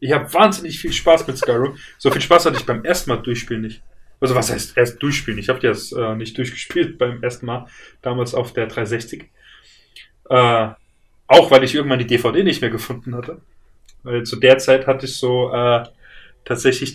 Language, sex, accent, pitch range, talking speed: German, male, German, 120-145 Hz, 195 wpm